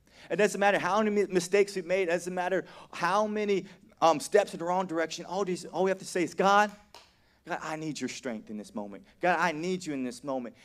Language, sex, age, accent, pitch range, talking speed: English, male, 30-49, American, 145-180 Hz, 235 wpm